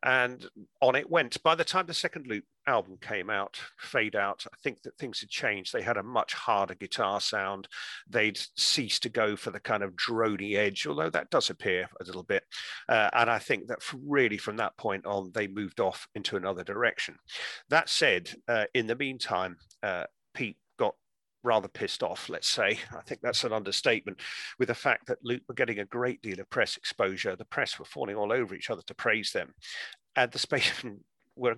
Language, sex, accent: English, male, British